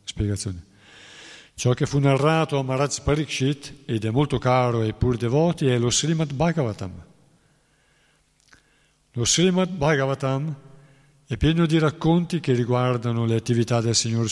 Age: 60-79